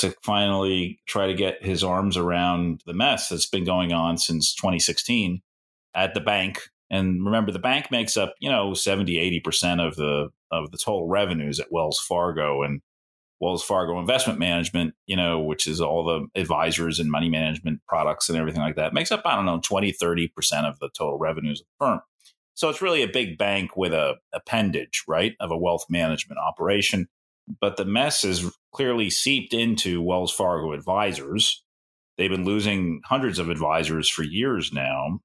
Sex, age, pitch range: male, 30-49, 80-100 Hz